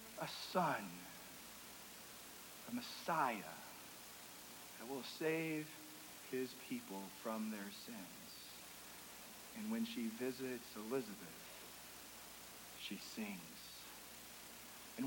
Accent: American